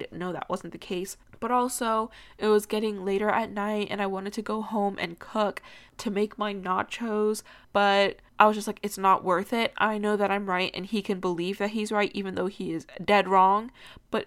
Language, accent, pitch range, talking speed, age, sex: English, American, 195-225 Hz, 225 wpm, 10-29, female